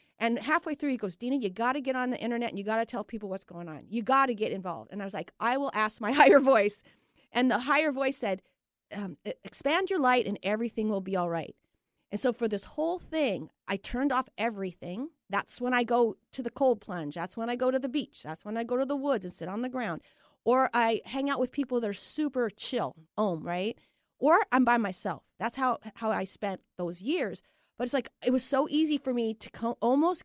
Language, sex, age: English, female, 40-59